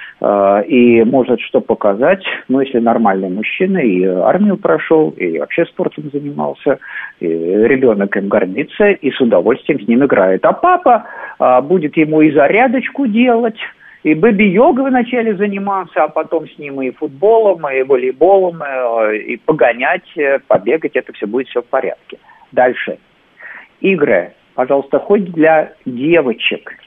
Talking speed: 140 wpm